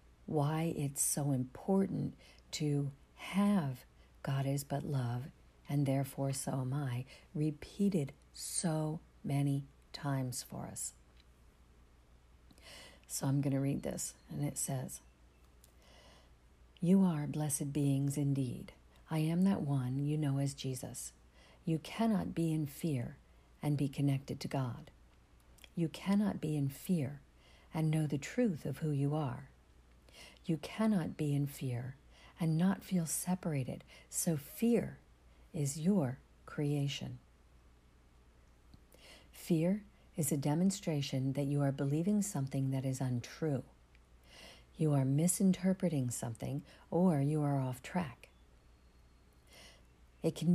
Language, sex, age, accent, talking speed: English, female, 50-69, American, 120 wpm